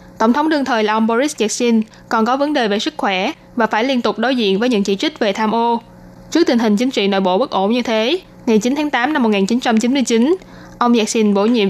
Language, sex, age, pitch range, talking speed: Vietnamese, female, 10-29, 210-250 Hz, 250 wpm